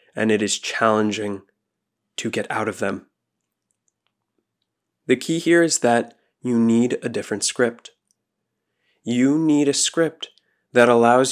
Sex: male